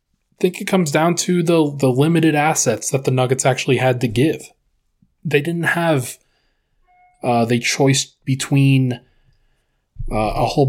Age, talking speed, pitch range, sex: 20-39, 150 wpm, 115-140 Hz, male